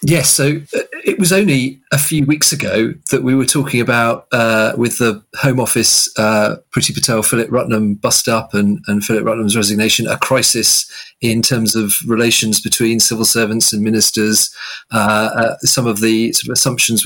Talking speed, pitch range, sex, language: 175 wpm, 110-125 Hz, male, English